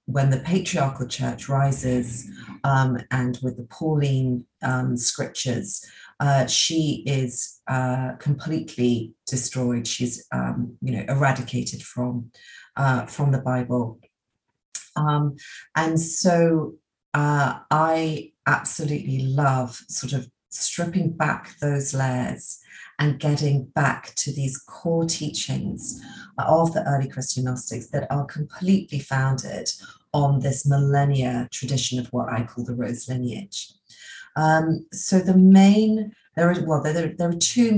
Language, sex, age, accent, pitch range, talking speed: English, female, 40-59, British, 125-155 Hz, 120 wpm